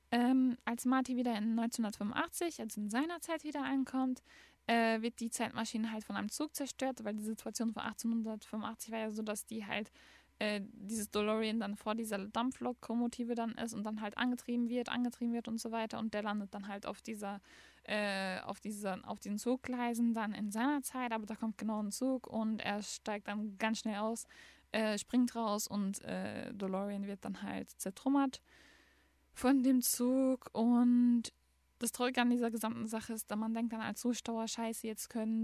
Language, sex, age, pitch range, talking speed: German, female, 10-29, 215-240 Hz, 190 wpm